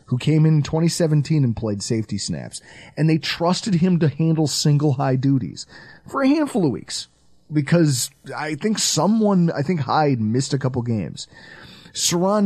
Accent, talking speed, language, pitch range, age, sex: American, 165 wpm, English, 130-175 Hz, 30-49, male